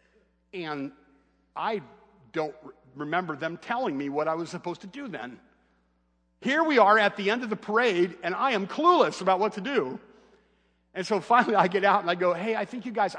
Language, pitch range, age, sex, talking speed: English, 115-180 Hz, 50-69, male, 205 wpm